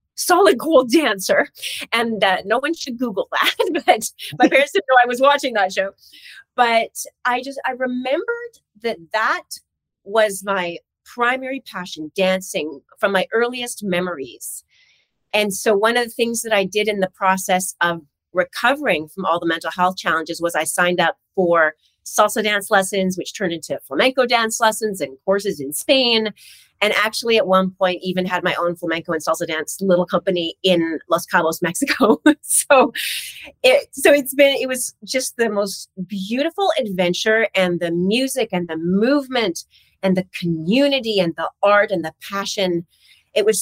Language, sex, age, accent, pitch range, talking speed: English, female, 30-49, American, 175-240 Hz, 170 wpm